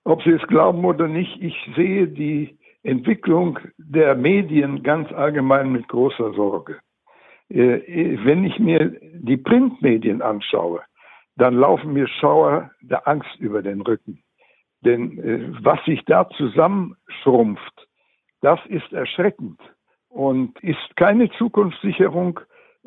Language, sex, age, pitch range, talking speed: German, male, 60-79, 135-205 Hz, 115 wpm